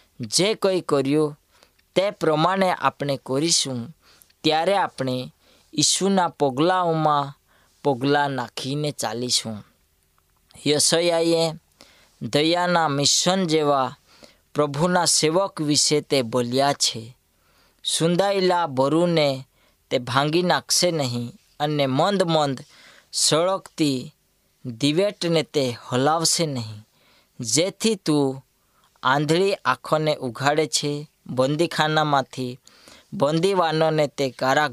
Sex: female